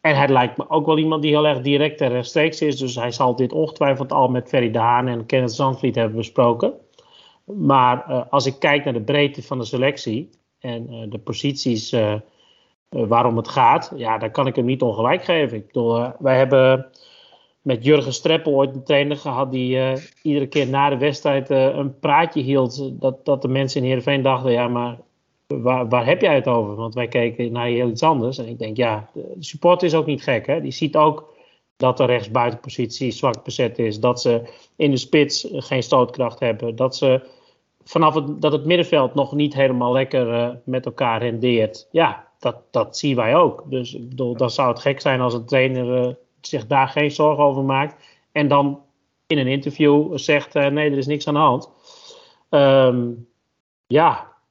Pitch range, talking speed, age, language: 120-145 Hz, 205 wpm, 40-59, English